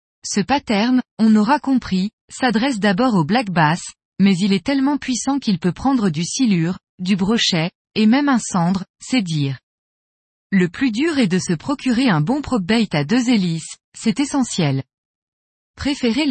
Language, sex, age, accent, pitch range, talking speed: French, female, 20-39, French, 180-250 Hz, 160 wpm